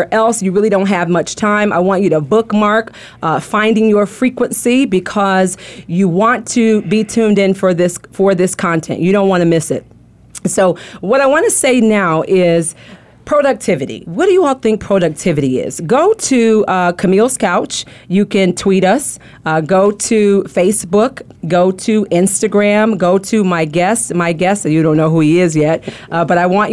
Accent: American